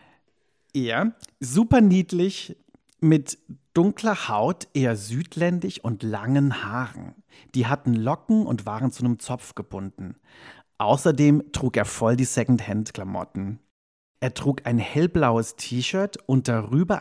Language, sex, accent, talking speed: German, male, German, 120 wpm